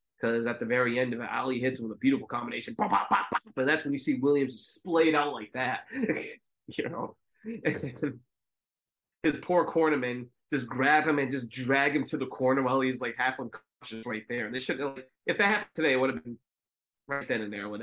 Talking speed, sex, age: 230 wpm, male, 20-39